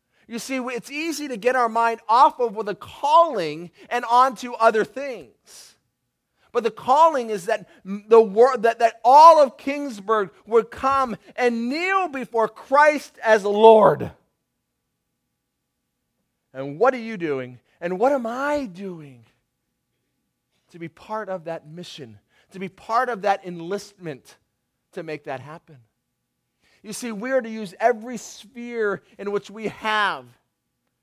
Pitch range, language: 175-235 Hz, English